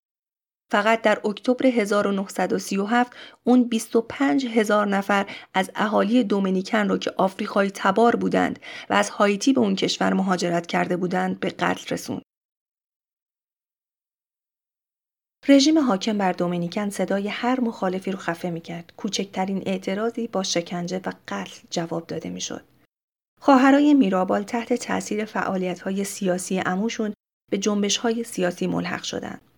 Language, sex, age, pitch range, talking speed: Persian, female, 30-49, 185-230 Hz, 125 wpm